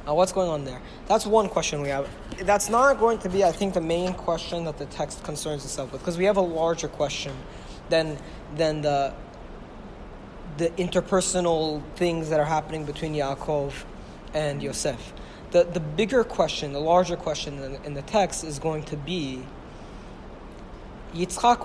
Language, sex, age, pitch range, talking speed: English, male, 20-39, 155-185 Hz, 165 wpm